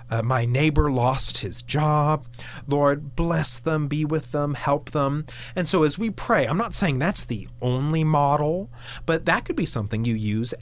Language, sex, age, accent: English, male, 30-49, American